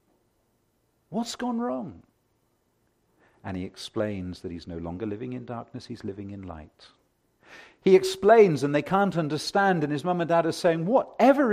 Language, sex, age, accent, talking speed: English, male, 50-69, British, 160 wpm